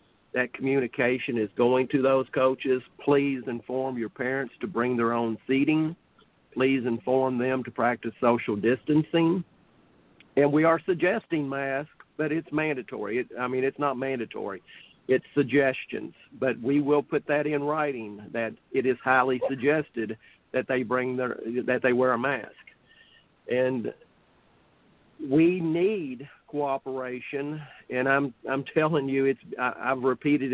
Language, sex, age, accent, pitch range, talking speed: English, male, 50-69, American, 125-145 Hz, 145 wpm